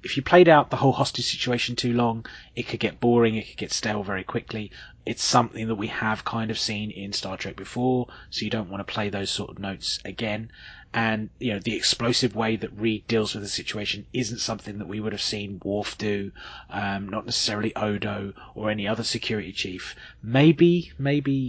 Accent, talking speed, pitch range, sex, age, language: British, 210 wpm, 100-120 Hz, male, 20-39, English